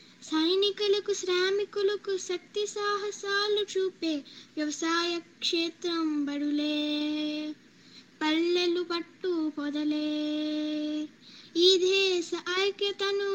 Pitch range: 315-355 Hz